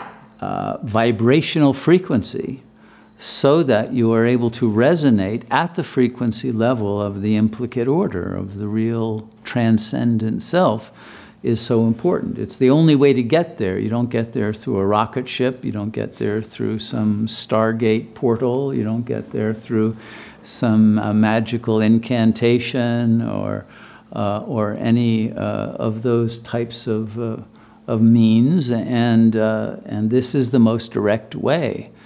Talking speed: 150 wpm